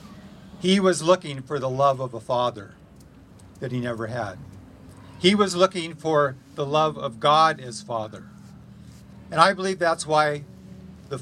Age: 50-69